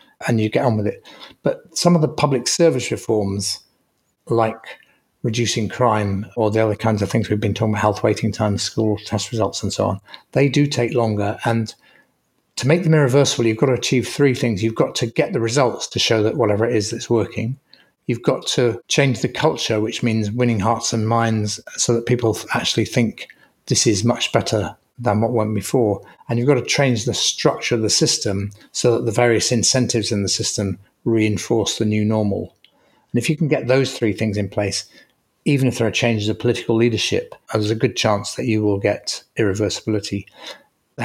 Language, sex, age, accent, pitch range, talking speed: English, male, 40-59, British, 105-120 Hz, 205 wpm